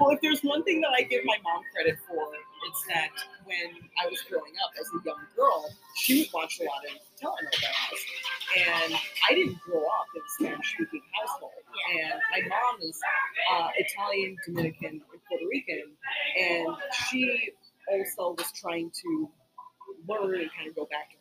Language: English